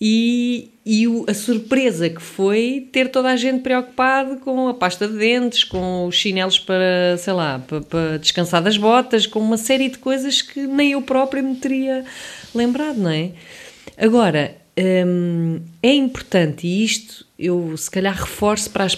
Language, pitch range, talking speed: English, 165-210 Hz, 165 wpm